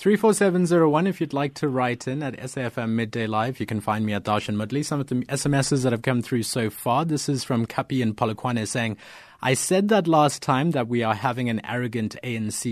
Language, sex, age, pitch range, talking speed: English, male, 30-49, 115-155 Hz, 220 wpm